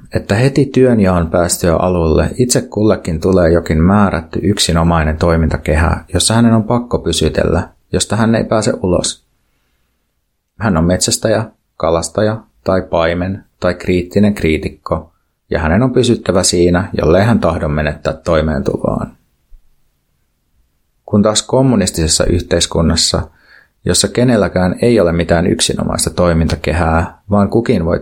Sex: male